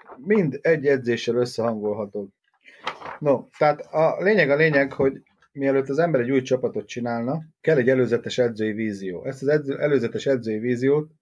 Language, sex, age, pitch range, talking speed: Hungarian, male, 30-49, 120-145 Hz, 155 wpm